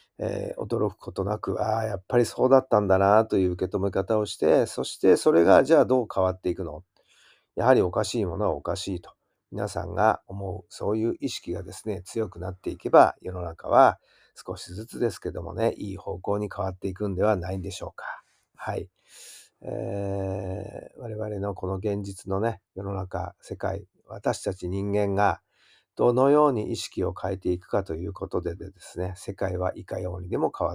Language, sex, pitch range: Japanese, male, 95-110 Hz